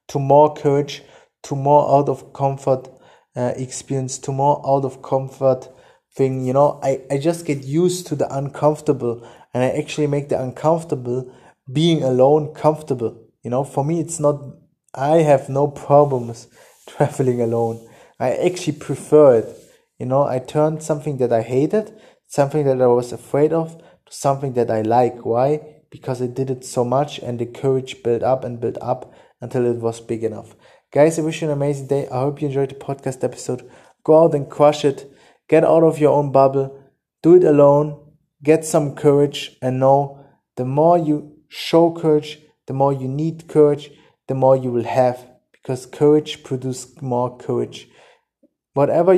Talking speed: 175 wpm